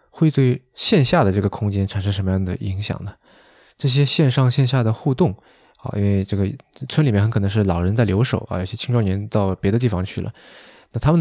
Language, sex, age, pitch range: Chinese, male, 20-39, 100-130 Hz